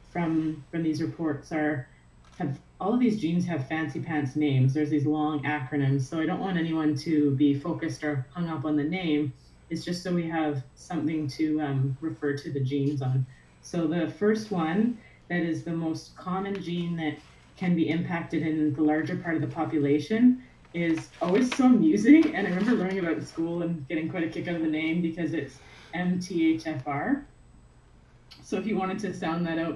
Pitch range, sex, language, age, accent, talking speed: 150-170 Hz, female, English, 30-49, American, 195 wpm